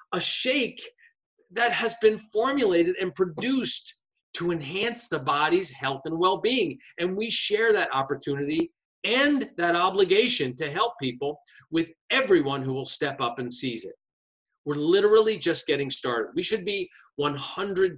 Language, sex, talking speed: English, male, 150 wpm